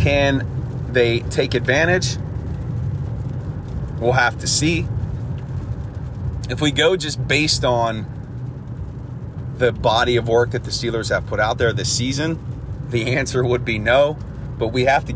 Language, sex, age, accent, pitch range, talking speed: English, male, 30-49, American, 115-130 Hz, 145 wpm